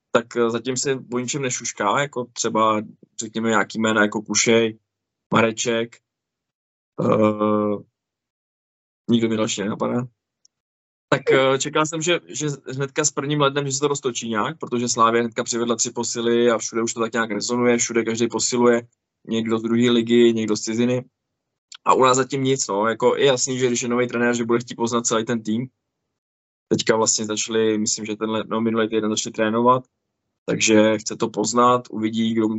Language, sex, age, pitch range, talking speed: Czech, male, 20-39, 110-120 Hz, 175 wpm